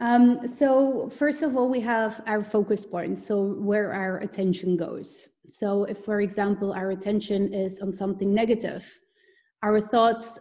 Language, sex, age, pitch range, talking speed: English, female, 30-49, 190-220 Hz, 155 wpm